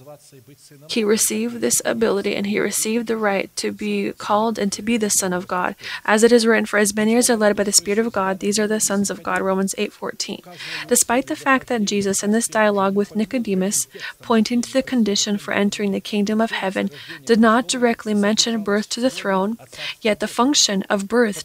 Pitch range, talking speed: 200-230 Hz, 215 wpm